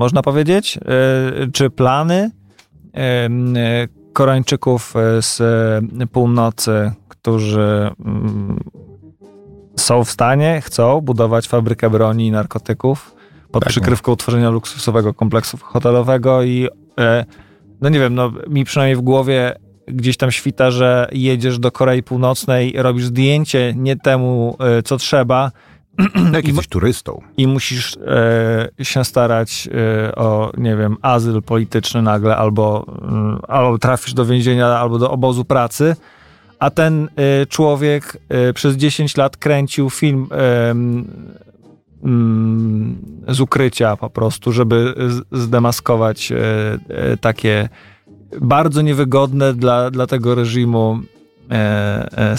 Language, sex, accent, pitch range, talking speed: Polish, male, native, 110-130 Hz, 115 wpm